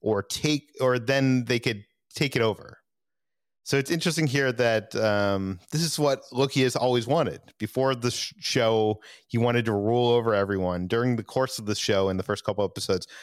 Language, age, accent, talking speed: English, 30-49, American, 195 wpm